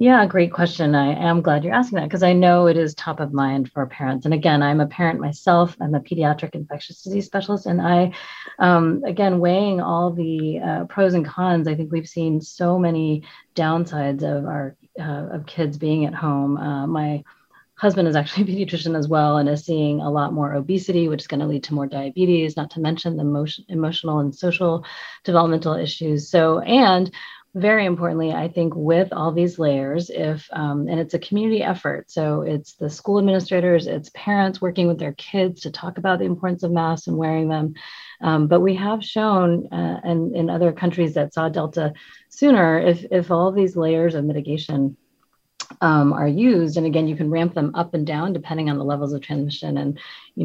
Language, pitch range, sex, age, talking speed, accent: English, 150-175 Hz, female, 30-49, 200 wpm, American